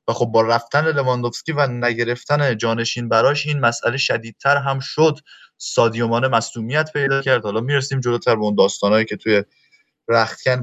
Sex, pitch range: male, 120-155 Hz